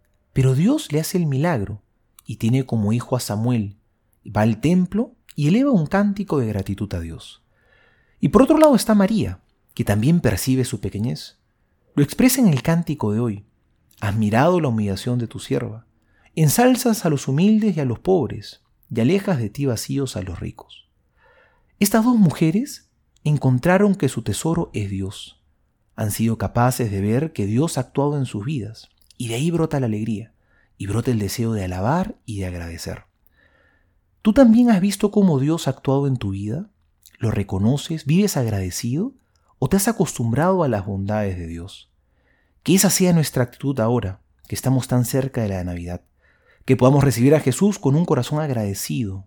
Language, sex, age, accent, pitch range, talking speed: Spanish, male, 40-59, Argentinian, 105-165 Hz, 175 wpm